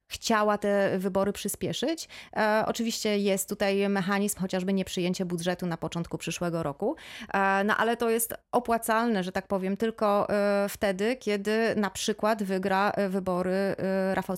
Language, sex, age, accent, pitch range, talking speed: Polish, female, 30-49, native, 185-215 Hz, 130 wpm